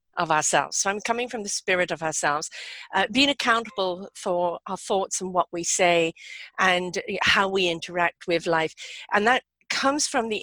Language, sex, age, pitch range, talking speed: English, female, 50-69, 185-245 Hz, 180 wpm